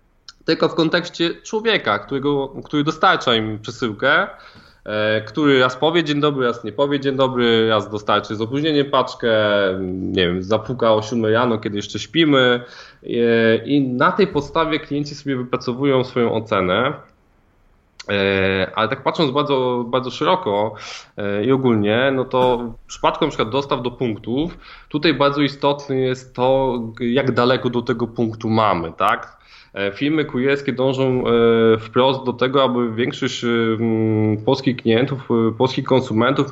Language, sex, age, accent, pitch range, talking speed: Polish, male, 20-39, native, 115-140 Hz, 135 wpm